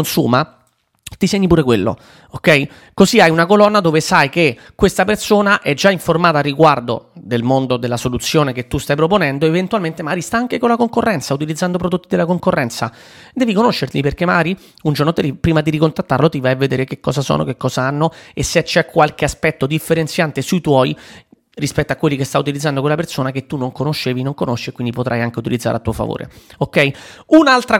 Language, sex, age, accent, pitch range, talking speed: Italian, male, 30-49, native, 135-180 Hz, 195 wpm